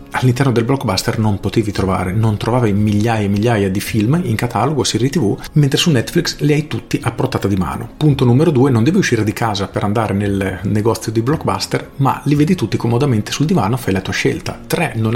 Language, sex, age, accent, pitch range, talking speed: Italian, male, 40-59, native, 105-130 Hz, 215 wpm